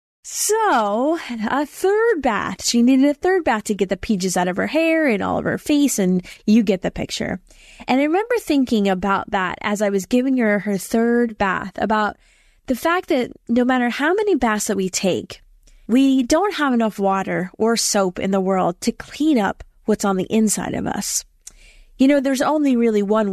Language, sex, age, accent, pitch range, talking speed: English, female, 20-39, American, 205-285 Hz, 200 wpm